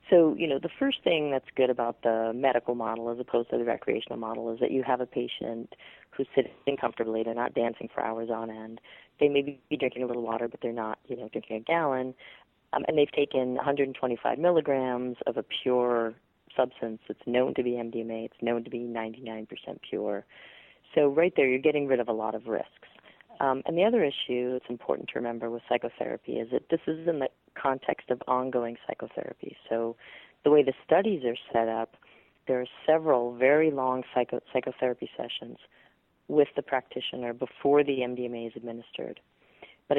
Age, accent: 40-59, American